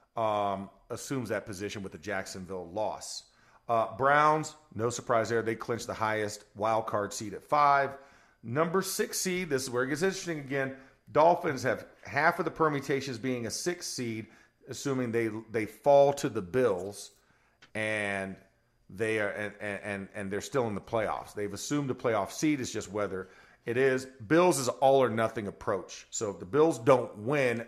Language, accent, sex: English, American, male